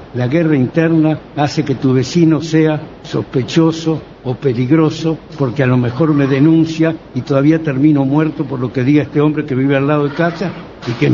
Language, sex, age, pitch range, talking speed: Spanish, male, 60-79, 125-155 Hz, 195 wpm